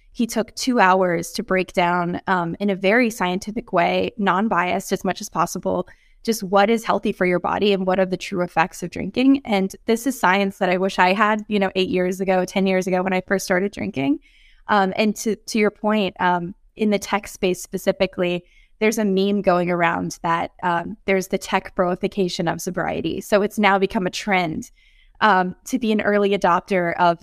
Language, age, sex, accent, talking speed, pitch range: English, 20-39, female, American, 205 wpm, 185-215 Hz